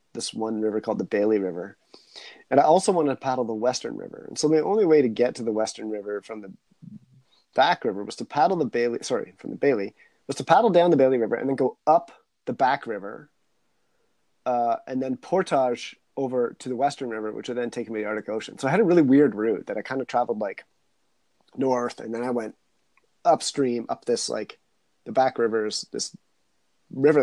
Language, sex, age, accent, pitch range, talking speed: English, male, 30-49, American, 110-135 Hz, 220 wpm